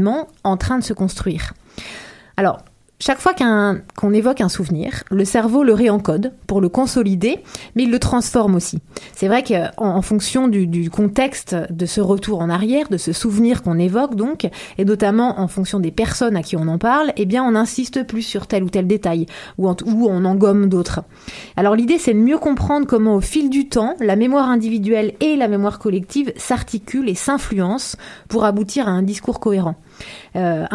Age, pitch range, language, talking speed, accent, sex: 30-49, 190-240 Hz, French, 195 wpm, French, female